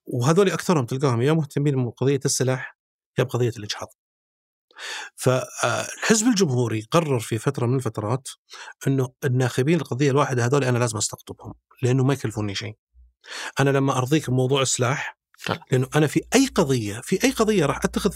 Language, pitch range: Arabic, 125-190 Hz